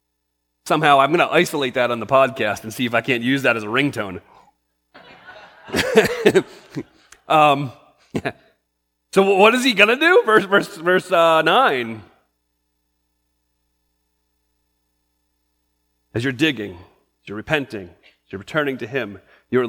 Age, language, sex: 40-59, English, male